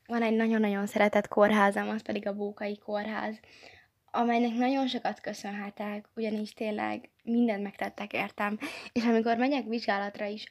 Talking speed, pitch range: 135 wpm, 205-240 Hz